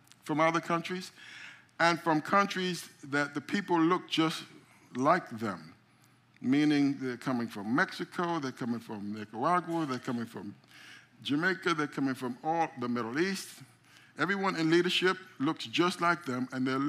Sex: male